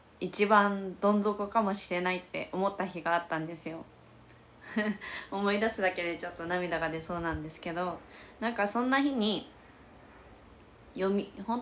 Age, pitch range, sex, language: 20-39, 170-215 Hz, female, Japanese